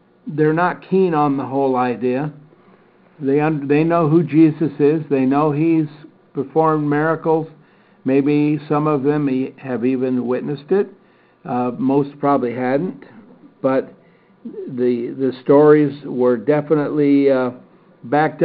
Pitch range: 135-170 Hz